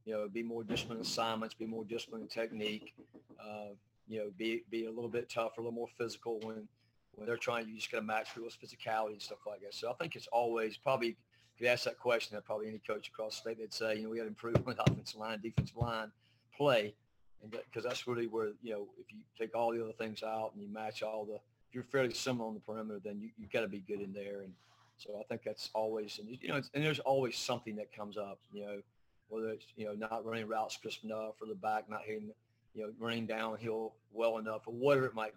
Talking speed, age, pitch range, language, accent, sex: 265 wpm, 40-59, 105-120 Hz, English, American, male